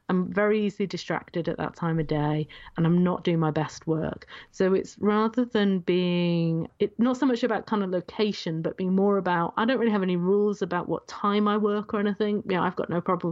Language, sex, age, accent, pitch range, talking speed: English, female, 30-49, British, 165-200 Hz, 235 wpm